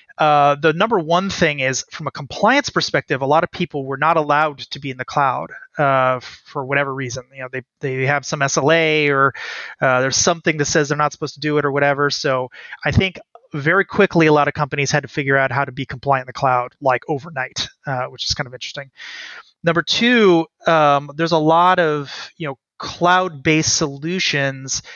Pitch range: 135-160 Hz